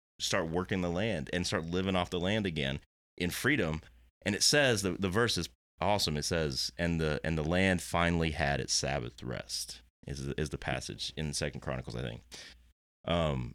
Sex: male